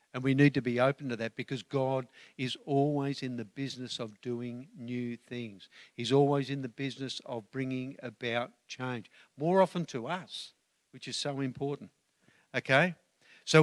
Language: English